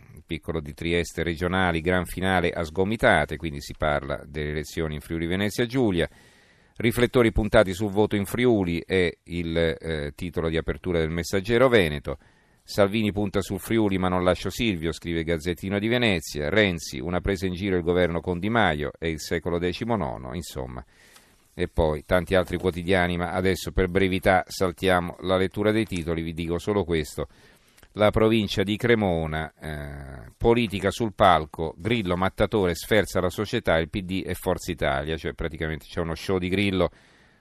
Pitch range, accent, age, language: 85-105 Hz, native, 40-59, Italian